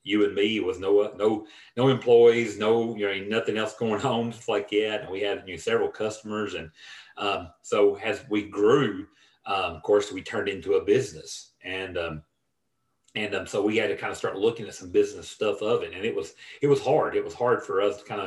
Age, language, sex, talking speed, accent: 40-59, English, male, 235 wpm, American